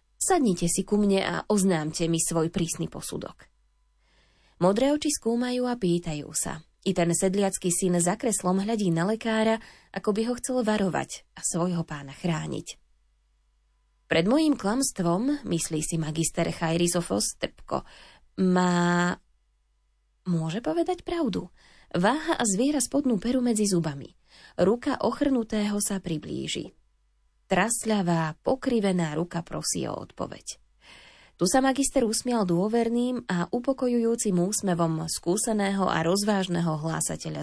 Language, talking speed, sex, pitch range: Slovak, 120 wpm, female, 165-235 Hz